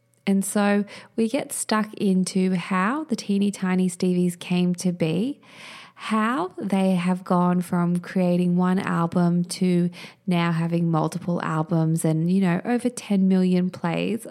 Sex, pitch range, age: female, 170-200 Hz, 20-39